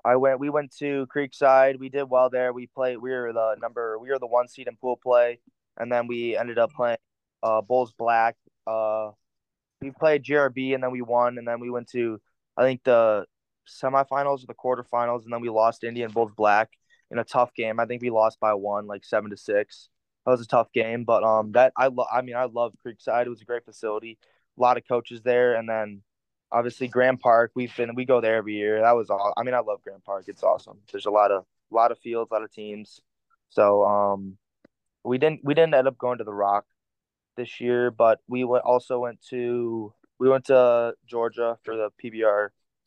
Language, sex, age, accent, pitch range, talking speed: English, male, 20-39, American, 110-125 Hz, 225 wpm